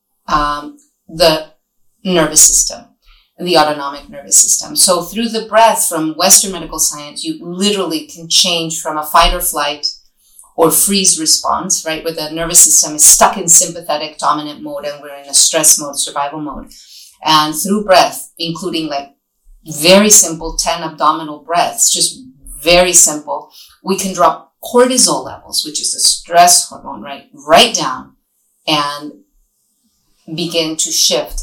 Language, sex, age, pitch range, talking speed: English, female, 30-49, 155-190 Hz, 150 wpm